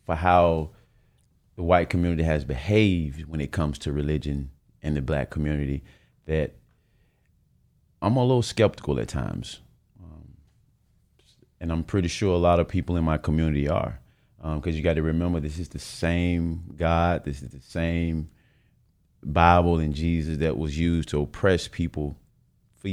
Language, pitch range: English, 75-90 Hz